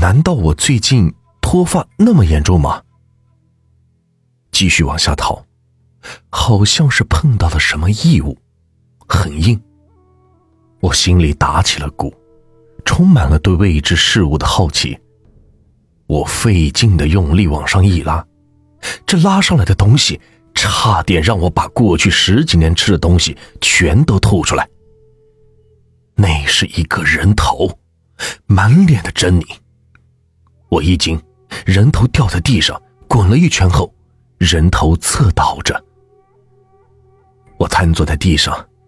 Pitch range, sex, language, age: 80-115 Hz, male, Chinese, 40-59